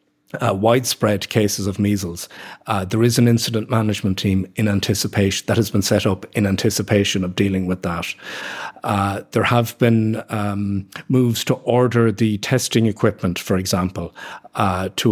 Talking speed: 160 wpm